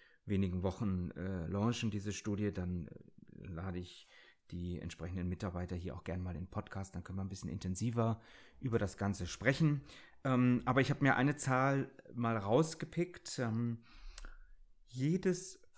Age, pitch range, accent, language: 30-49, 95-135 Hz, German, German